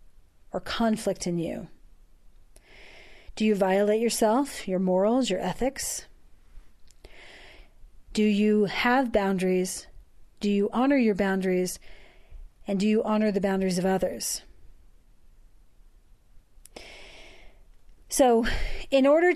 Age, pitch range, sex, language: 40-59, 210-275 Hz, female, English